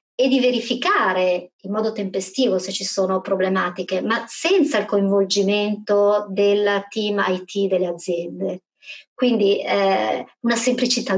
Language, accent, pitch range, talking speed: Italian, native, 190-230 Hz, 125 wpm